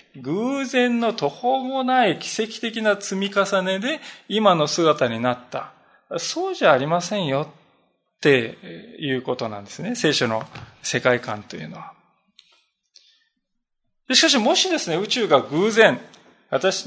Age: 20-39